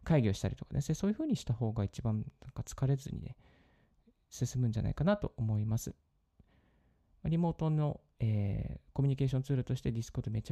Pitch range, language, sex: 110-155 Hz, Japanese, male